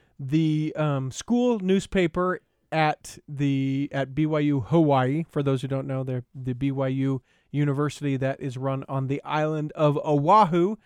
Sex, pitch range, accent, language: male, 145-180 Hz, American, English